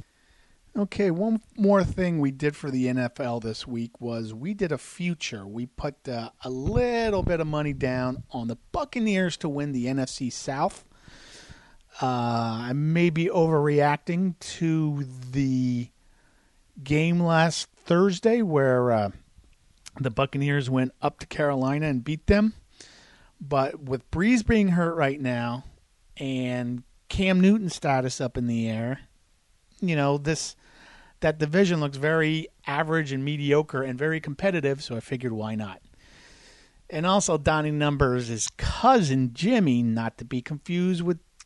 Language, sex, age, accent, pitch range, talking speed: English, male, 40-59, American, 125-165 Hz, 140 wpm